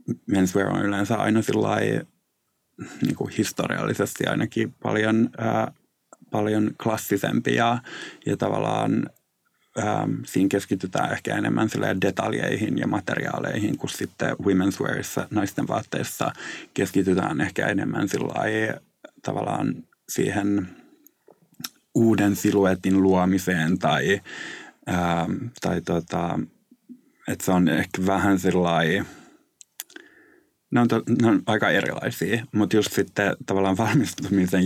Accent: native